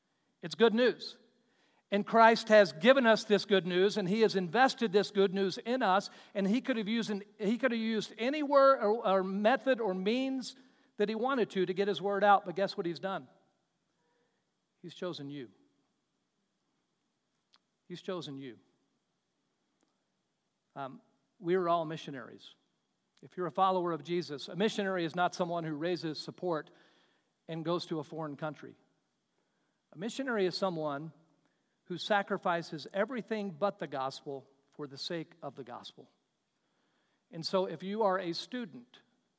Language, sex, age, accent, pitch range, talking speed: English, male, 50-69, American, 160-210 Hz, 155 wpm